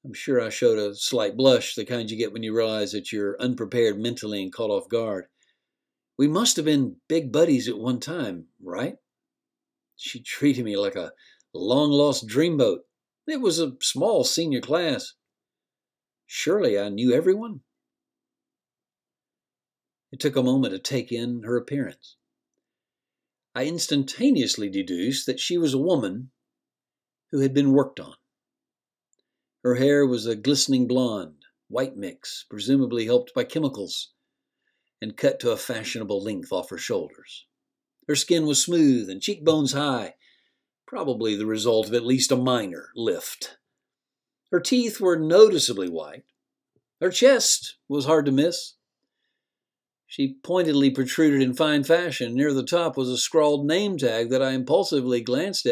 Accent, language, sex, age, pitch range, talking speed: American, English, male, 50-69, 125-180 Hz, 150 wpm